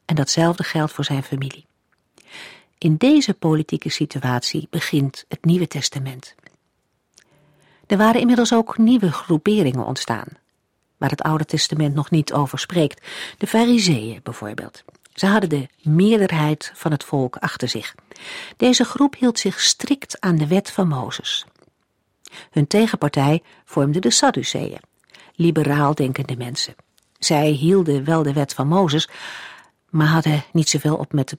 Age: 50-69